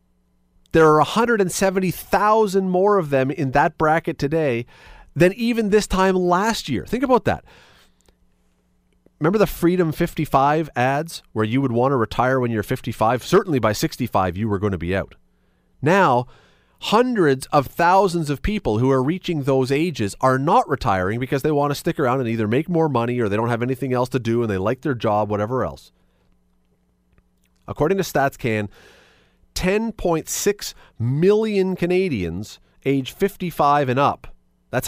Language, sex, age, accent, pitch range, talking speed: English, male, 30-49, American, 105-170 Hz, 160 wpm